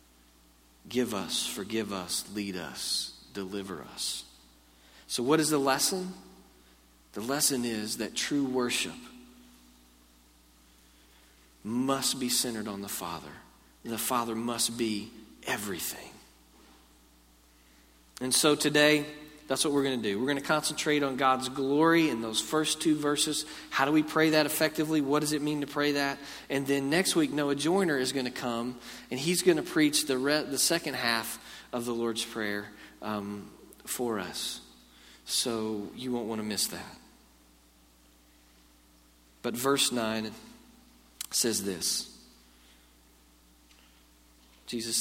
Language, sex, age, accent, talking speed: English, male, 40-59, American, 135 wpm